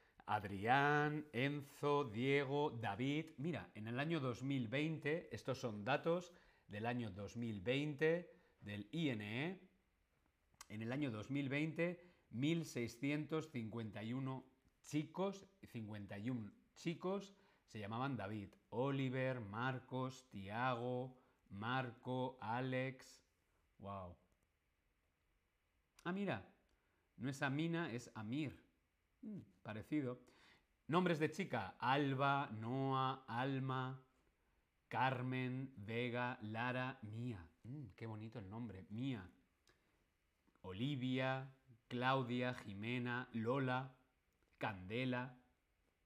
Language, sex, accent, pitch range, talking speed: Spanish, male, Spanish, 105-140 Hz, 80 wpm